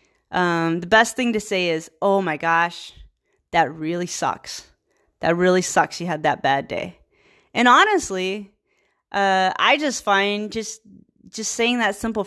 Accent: American